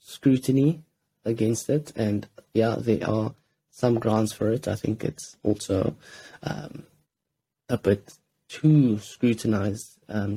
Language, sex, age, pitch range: English, male, 20-39, 105-120 Hz